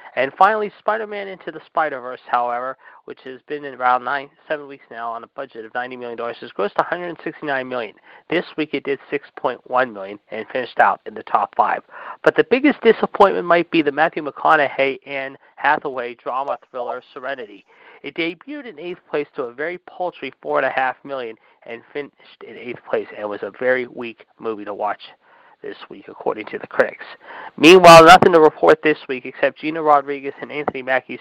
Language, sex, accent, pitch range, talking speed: English, male, American, 125-170 Hz, 190 wpm